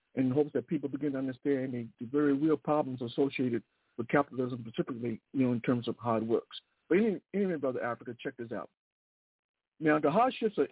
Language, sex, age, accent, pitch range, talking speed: English, male, 60-79, American, 130-165 Hz, 195 wpm